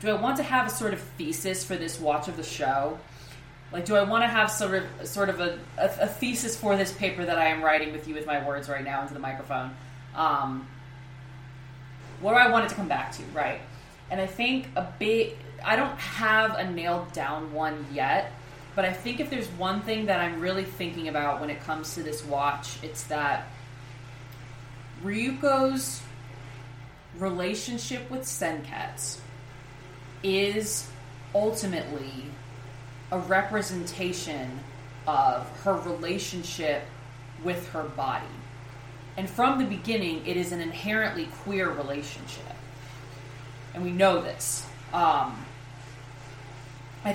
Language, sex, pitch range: English, female, 130-195 Hz